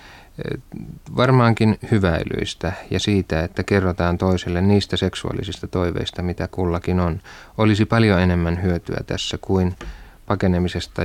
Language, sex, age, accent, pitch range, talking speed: Finnish, male, 30-49, native, 90-105 Hz, 110 wpm